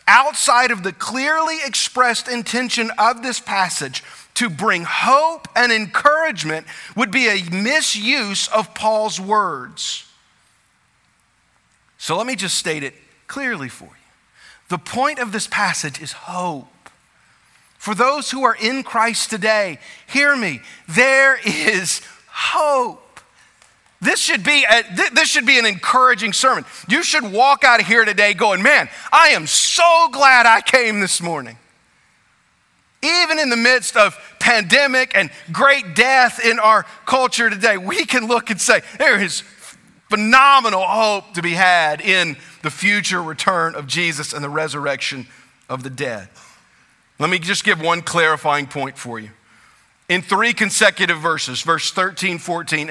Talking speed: 145 wpm